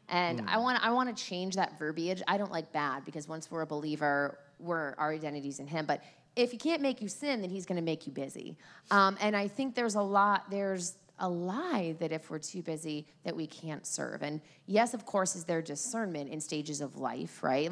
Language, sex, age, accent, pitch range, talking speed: English, female, 30-49, American, 155-200 Hz, 230 wpm